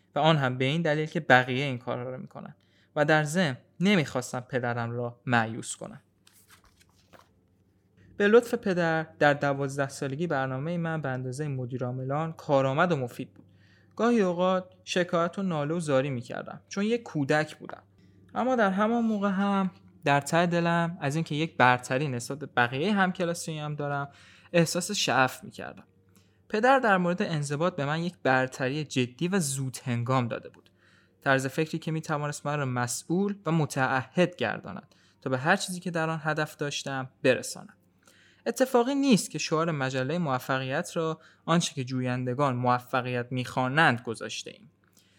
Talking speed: 160 wpm